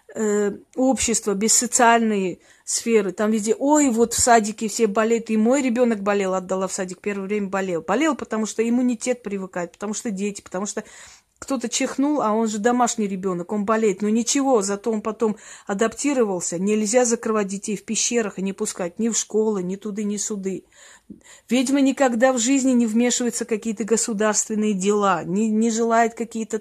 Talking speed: 170 wpm